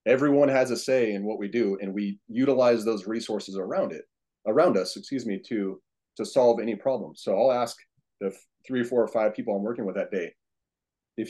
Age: 30-49